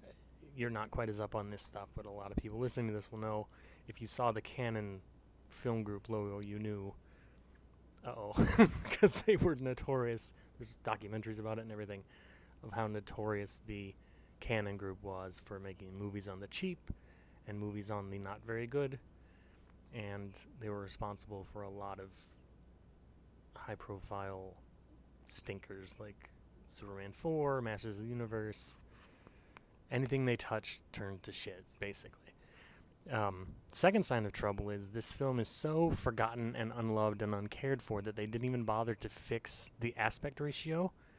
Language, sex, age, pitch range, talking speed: English, male, 20-39, 100-120 Hz, 160 wpm